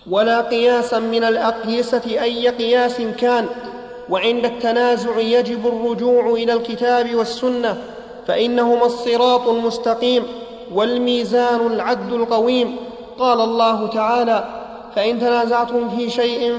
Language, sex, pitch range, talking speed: Arabic, male, 235-245 Hz, 100 wpm